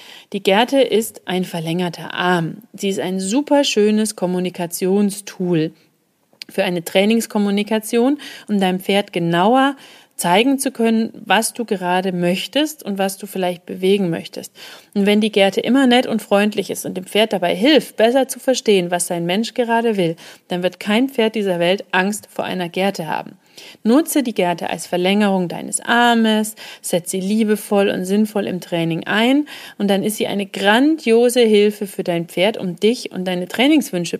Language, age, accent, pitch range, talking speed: German, 40-59, German, 185-225 Hz, 165 wpm